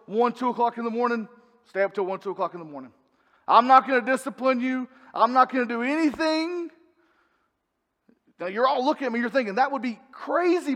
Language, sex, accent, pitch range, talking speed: English, male, American, 185-250 Hz, 220 wpm